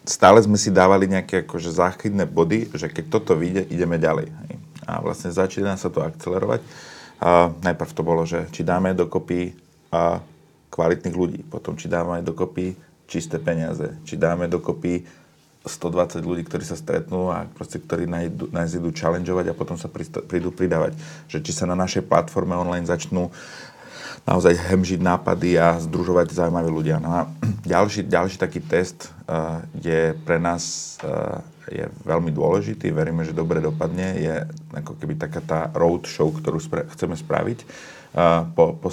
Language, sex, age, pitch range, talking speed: Slovak, male, 30-49, 80-90 Hz, 160 wpm